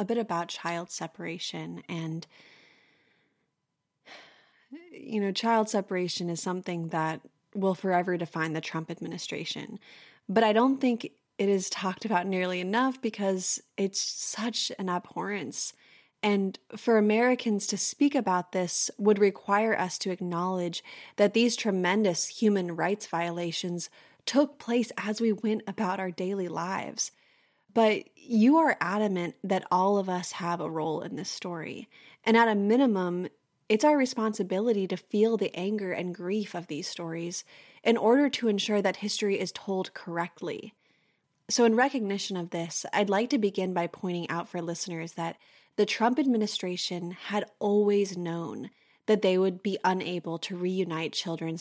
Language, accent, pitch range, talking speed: English, American, 175-215 Hz, 150 wpm